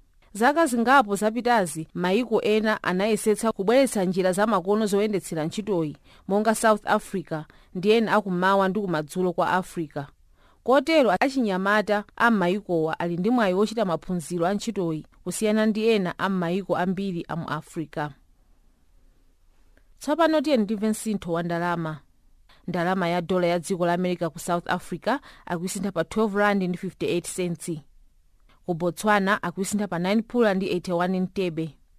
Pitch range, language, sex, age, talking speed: 170-210 Hz, English, female, 30-49, 125 wpm